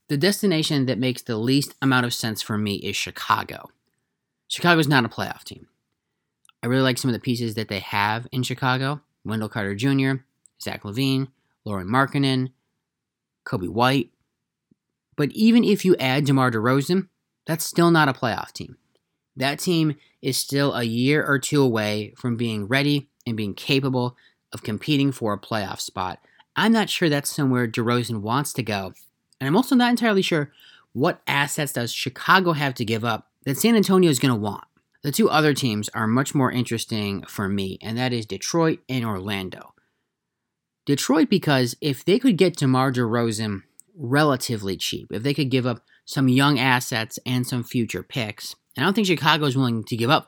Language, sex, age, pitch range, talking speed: English, male, 30-49, 115-145 Hz, 185 wpm